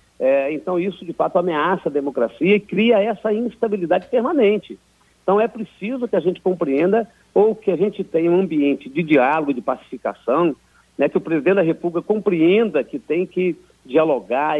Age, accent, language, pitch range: 50-69, Brazilian, Portuguese, 155-200 Hz